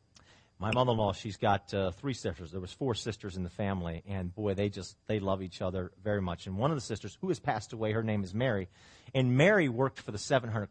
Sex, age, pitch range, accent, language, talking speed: male, 40-59, 110-155 Hz, American, English, 240 wpm